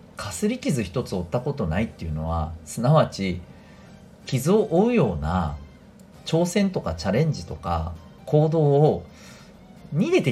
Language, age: Japanese, 40-59